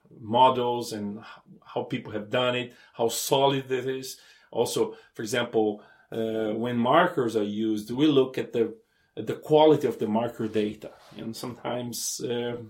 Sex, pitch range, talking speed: male, 115-150 Hz, 155 wpm